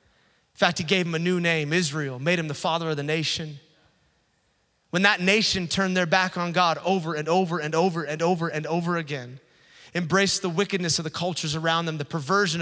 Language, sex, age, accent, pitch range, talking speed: English, male, 30-49, American, 145-180 Hz, 210 wpm